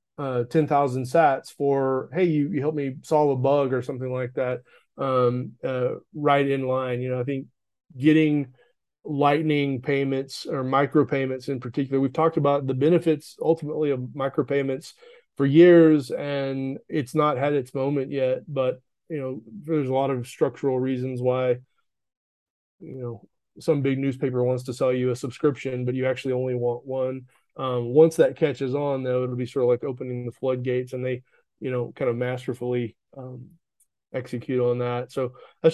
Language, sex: English, male